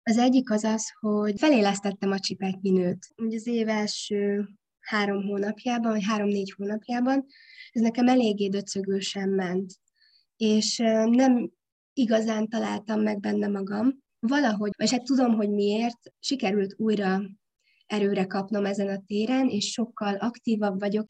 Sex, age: female, 20-39